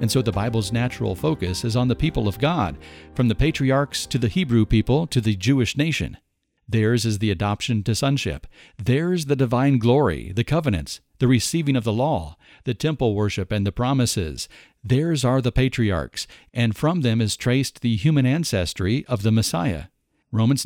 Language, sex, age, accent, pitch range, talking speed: English, male, 50-69, American, 105-130 Hz, 180 wpm